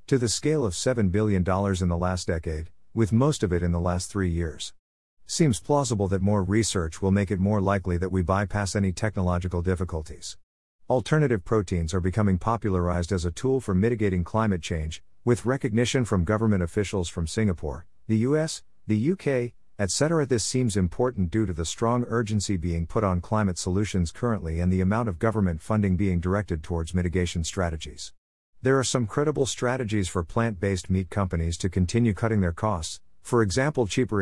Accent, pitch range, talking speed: American, 85-115 Hz, 175 wpm